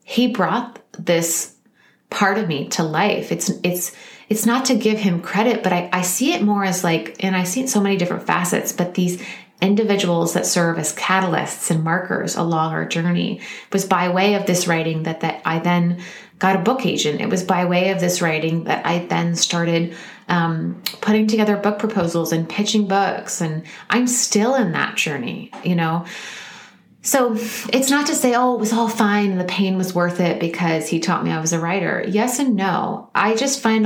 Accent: American